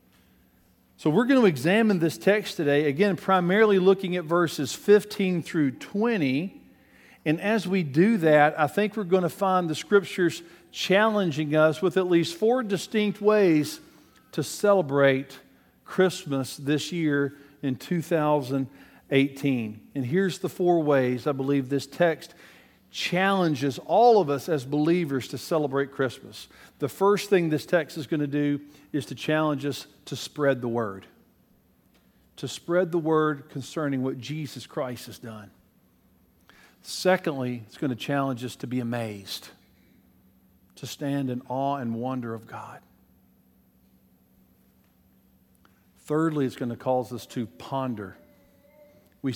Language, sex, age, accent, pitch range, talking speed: English, male, 50-69, American, 120-175 Hz, 140 wpm